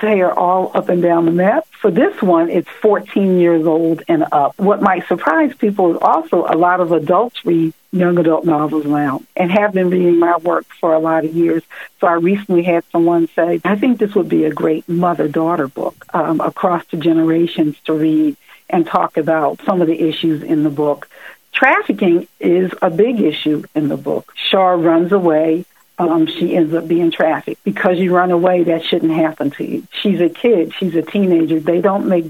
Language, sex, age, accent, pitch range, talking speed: English, female, 60-79, American, 160-195 Hz, 205 wpm